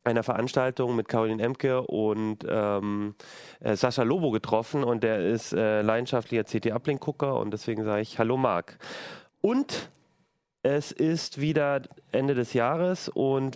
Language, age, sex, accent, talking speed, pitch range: German, 30-49, male, German, 135 wpm, 105-140 Hz